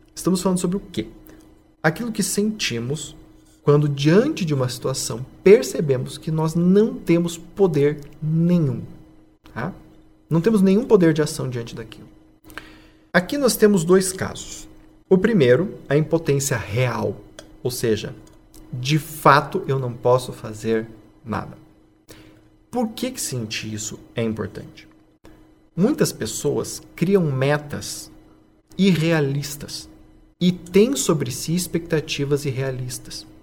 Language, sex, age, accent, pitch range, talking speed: Portuguese, male, 40-59, Brazilian, 110-170 Hz, 115 wpm